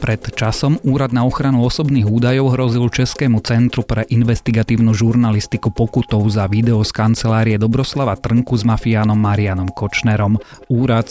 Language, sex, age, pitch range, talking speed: Slovak, male, 30-49, 105-120 Hz, 135 wpm